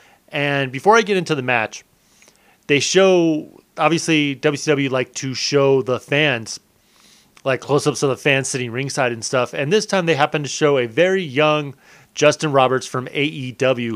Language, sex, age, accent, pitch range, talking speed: English, male, 30-49, American, 125-155 Hz, 170 wpm